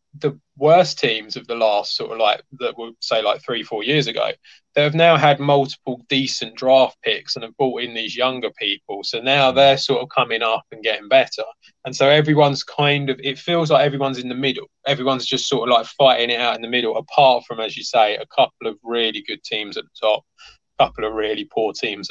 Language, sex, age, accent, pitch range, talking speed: English, male, 20-39, British, 130-155 Hz, 230 wpm